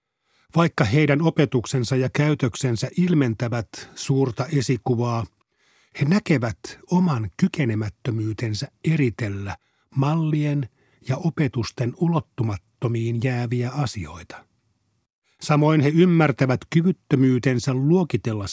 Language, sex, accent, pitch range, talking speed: Finnish, male, native, 120-150 Hz, 80 wpm